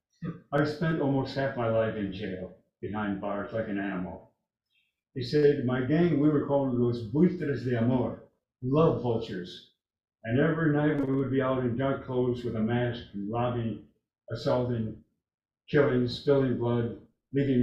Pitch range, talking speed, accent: 120-145 Hz, 155 wpm, American